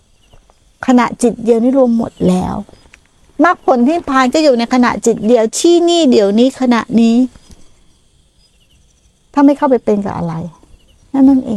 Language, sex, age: Thai, female, 60-79